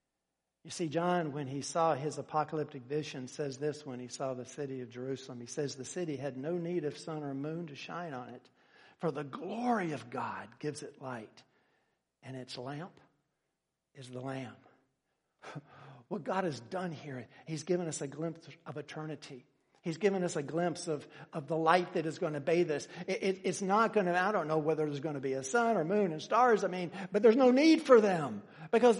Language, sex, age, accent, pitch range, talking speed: English, male, 60-79, American, 150-230 Hz, 215 wpm